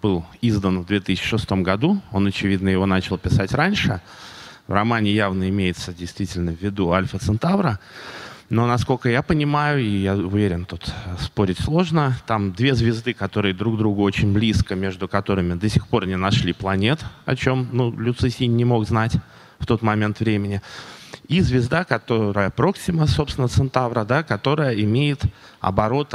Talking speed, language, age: 150 wpm, Russian, 20-39